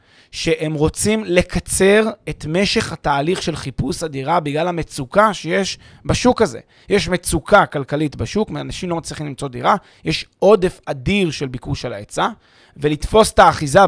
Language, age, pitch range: Hebrew, 30-49, 155-220 Hz